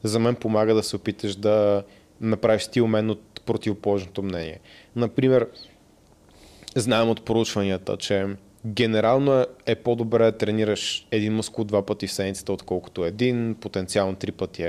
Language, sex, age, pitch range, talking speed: Bulgarian, male, 20-39, 105-125 Hz, 140 wpm